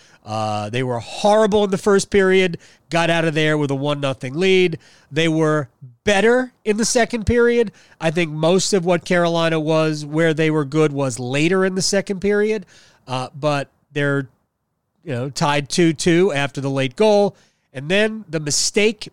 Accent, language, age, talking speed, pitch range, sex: American, English, 30-49, 175 wpm, 130-180 Hz, male